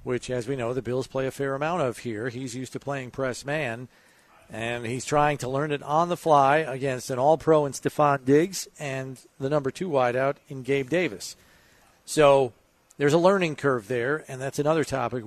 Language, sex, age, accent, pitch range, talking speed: English, male, 40-59, American, 130-155 Hz, 200 wpm